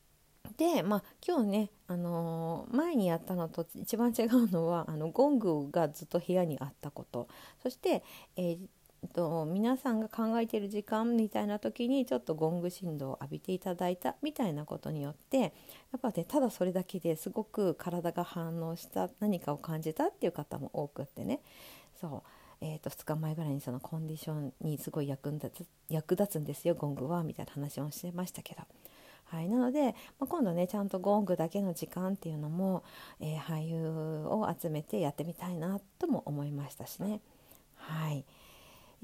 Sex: female